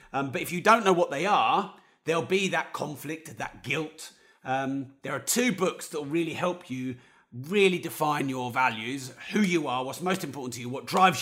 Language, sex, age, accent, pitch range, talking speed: English, male, 30-49, British, 135-195 Hz, 210 wpm